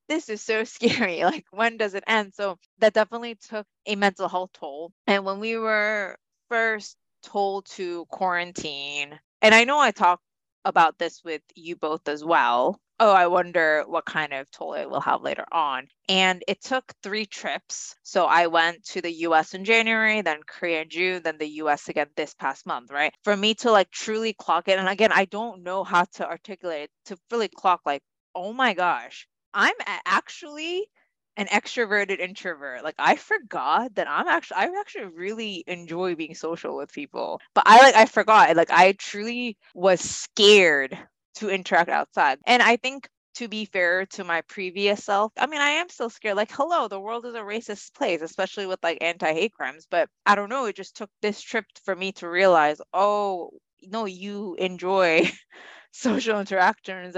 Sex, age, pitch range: female, 20-39, 175-220 Hz